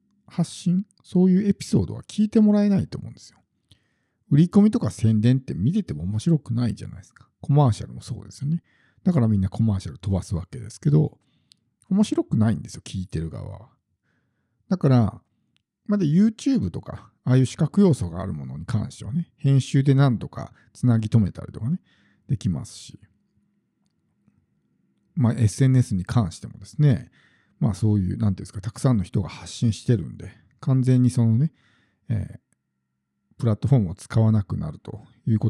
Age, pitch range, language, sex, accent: 50-69, 105-150 Hz, Japanese, male, native